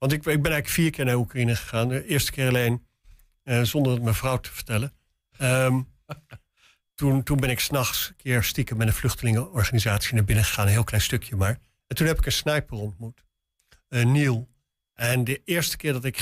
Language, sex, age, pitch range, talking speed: Dutch, male, 50-69, 110-135 Hz, 210 wpm